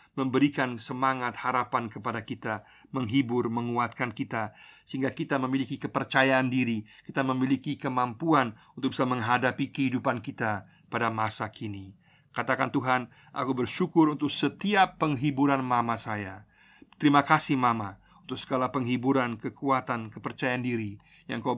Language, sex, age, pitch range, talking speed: Indonesian, male, 50-69, 115-150 Hz, 120 wpm